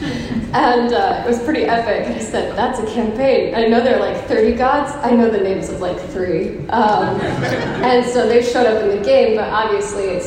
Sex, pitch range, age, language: female, 200-265 Hz, 10-29, English